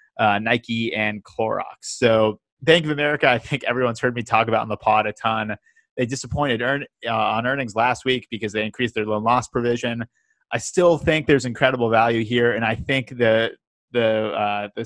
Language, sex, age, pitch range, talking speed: English, male, 30-49, 110-130 Hz, 200 wpm